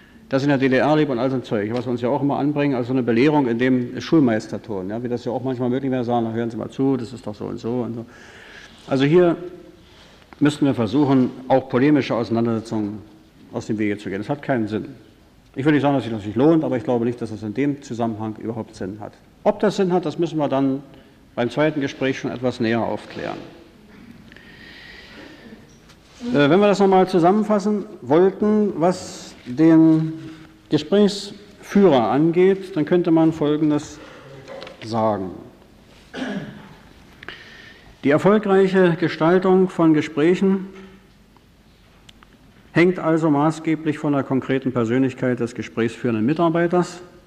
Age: 50-69